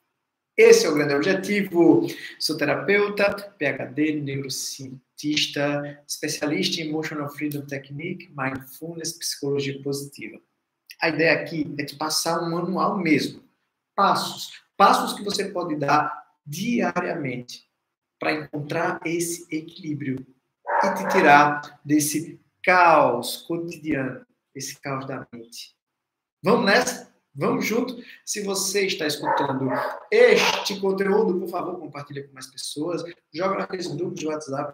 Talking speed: 115 wpm